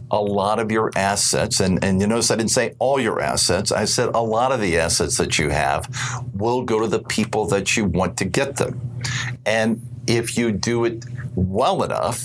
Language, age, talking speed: English, 50-69, 210 wpm